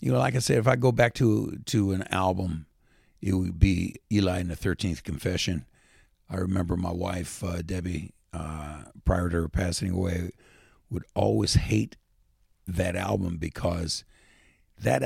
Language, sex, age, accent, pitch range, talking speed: English, male, 60-79, American, 85-110 Hz, 160 wpm